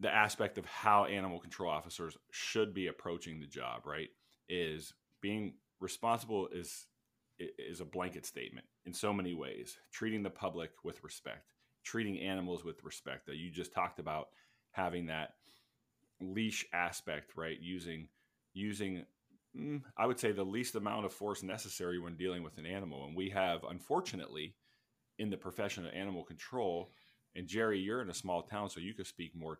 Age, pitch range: 30-49, 80-105 Hz